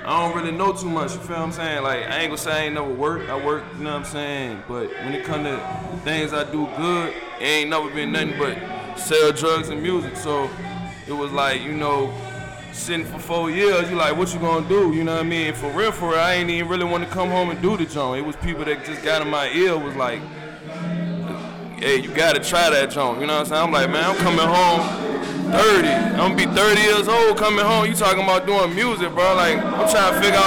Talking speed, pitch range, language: 260 wpm, 150-185 Hz, English